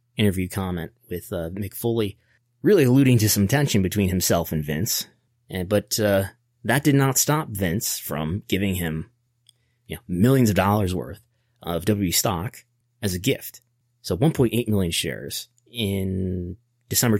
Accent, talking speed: American, 155 wpm